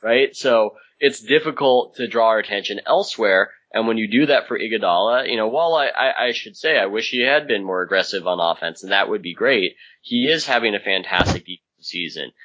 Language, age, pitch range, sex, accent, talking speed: English, 20-39, 95-115 Hz, male, American, 210 wpm